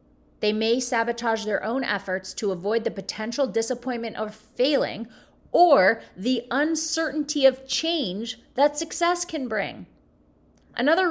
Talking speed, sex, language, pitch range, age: 125 wpm, female, English, 210-265 Hz, 30-49